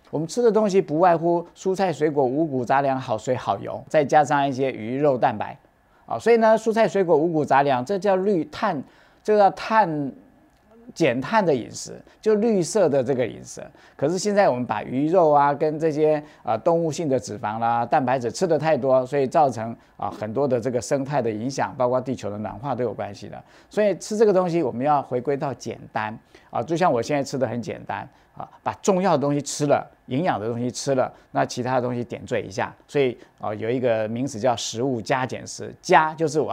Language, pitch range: Chinese, 125-175 Hz